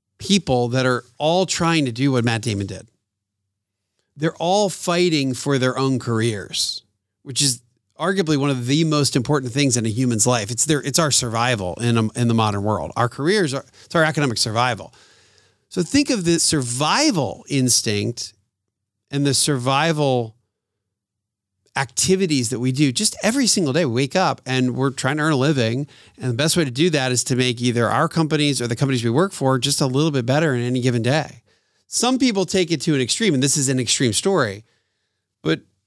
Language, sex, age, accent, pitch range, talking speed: English, male, 40-59, American, 115-155 Hz, 195 wpm